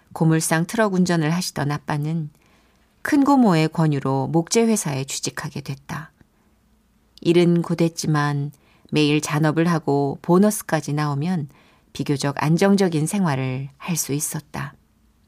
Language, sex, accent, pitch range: Korean, female, native, 145-170 Hz